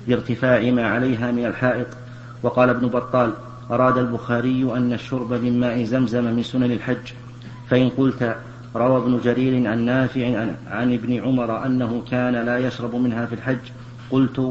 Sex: male